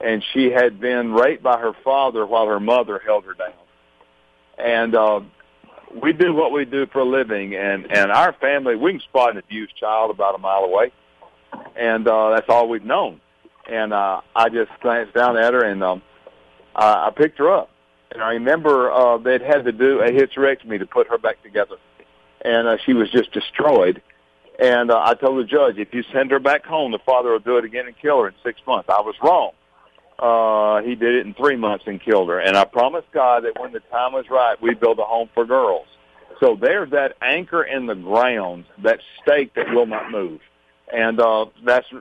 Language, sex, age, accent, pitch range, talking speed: English, male, 50-69, American, 110-135 Hz, 215 wpm